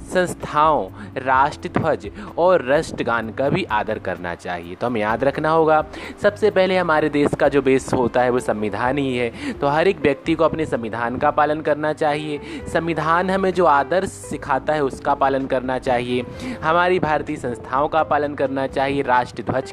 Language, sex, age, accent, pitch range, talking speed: Hindi, male, 20-39, native, 125-170 Hz, 175 wpm